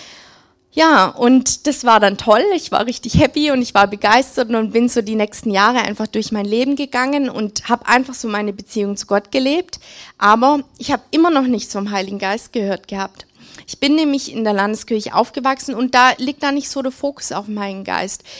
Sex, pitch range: female, 210-265 Hz